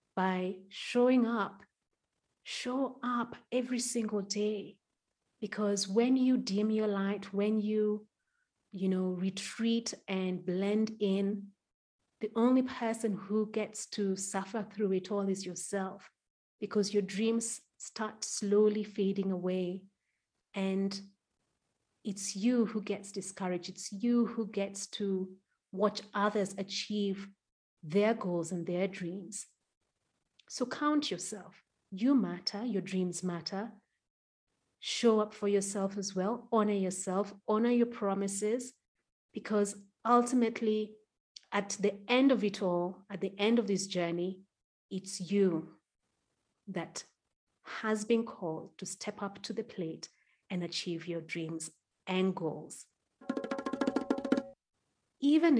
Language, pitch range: English, 190-220 Hz